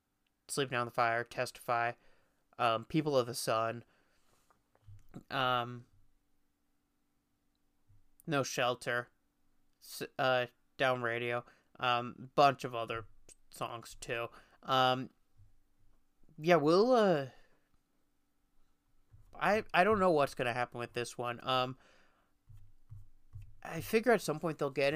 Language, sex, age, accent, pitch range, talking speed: English, male, 30-49, American, 110-145 Hz, 115 wpm